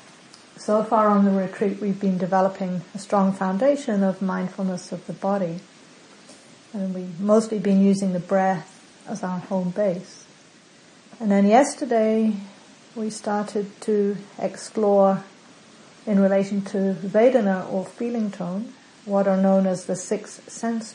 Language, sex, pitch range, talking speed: English, female, 190-220 Hz, 140 wpm